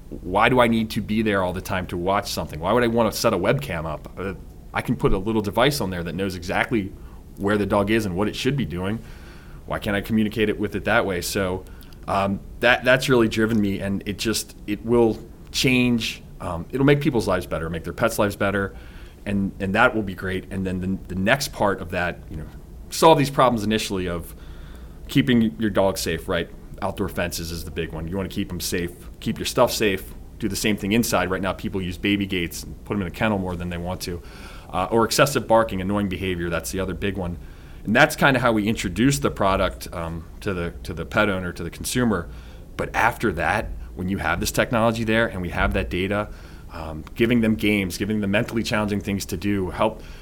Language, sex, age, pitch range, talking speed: English, male, 30-49, 85-110 Hz, 235 wpm